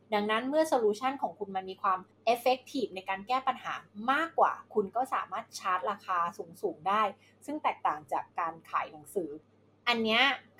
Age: 20-39